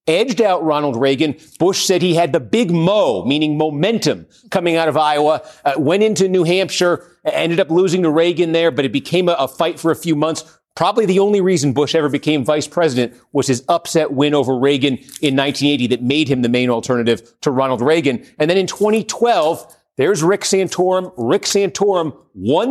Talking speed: 195 wpm